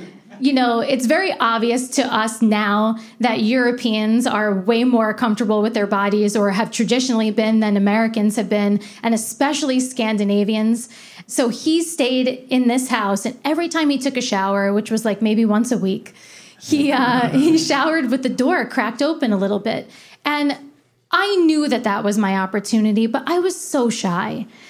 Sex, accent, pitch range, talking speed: female, American, 225-295 Hz, 175 wpm